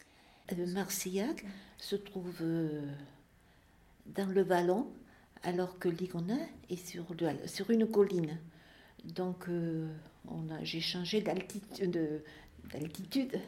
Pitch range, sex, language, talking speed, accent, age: 155-195 Hz, female, French, 100 wpm, French, 60-79